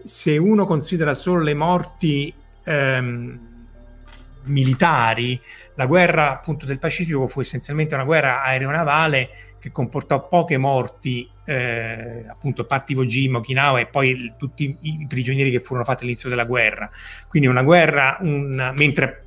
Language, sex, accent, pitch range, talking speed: Italian, male, native, 125-155 Hz, 145 wpm